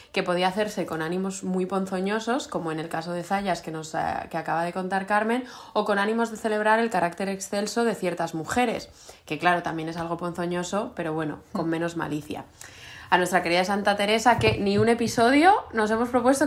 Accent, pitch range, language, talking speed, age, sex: Spanish, 175-210 Hz, Spanish, 195 wpm, 20-39, female